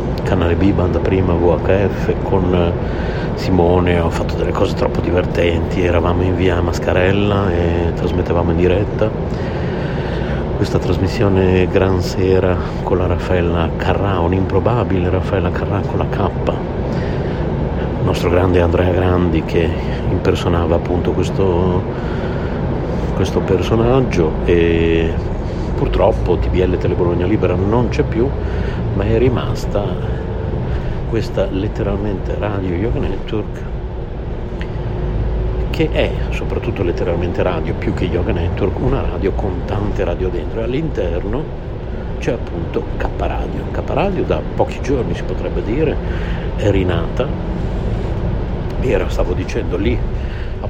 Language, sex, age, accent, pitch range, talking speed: Italian, male, 50-69, native, 85-95 Hz, 115 wpm